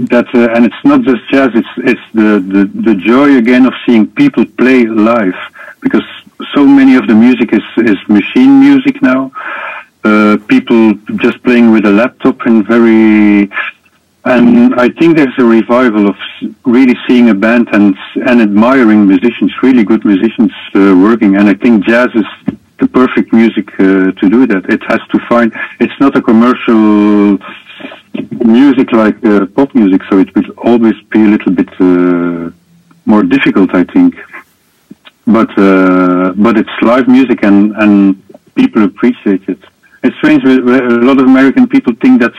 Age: 50-69